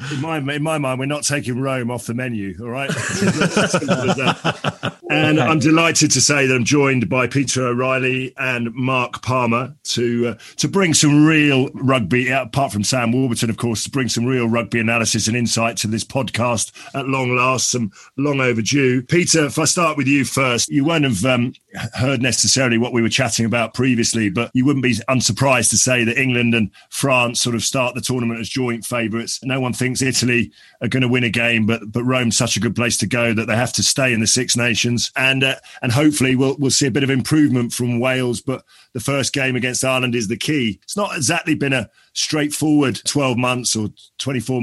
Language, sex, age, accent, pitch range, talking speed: English, male, 40-59, British, 120-140 Hz, 210 wpm